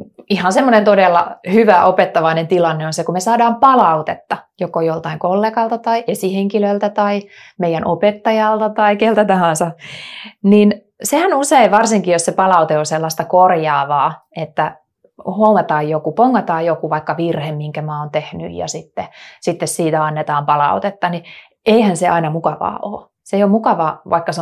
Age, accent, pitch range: 30-49, native, 160-205 Hz